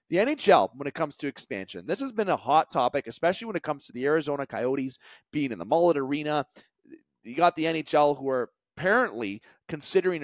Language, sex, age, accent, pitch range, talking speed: English, male, 30-49, American, 130-170 Hz, 200 wpm